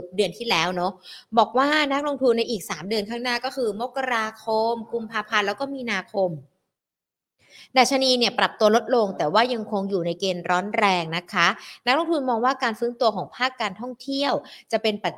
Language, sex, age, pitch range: Thai, female, 20-39, 185-240 Hz